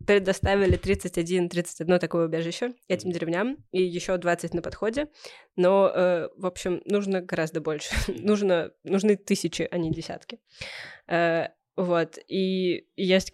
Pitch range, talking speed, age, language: 165-195 Hz, 130 wpm, 20-39, Russian